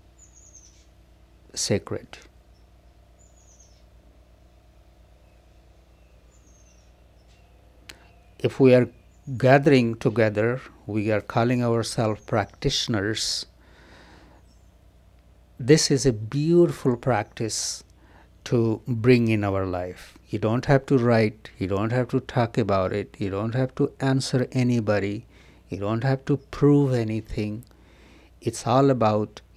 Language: English